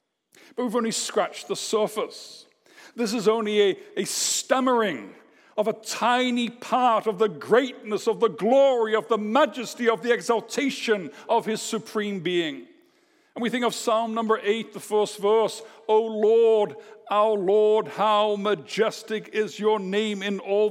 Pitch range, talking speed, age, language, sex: 200-245 Hz, 155 wpm, 60-79, English, male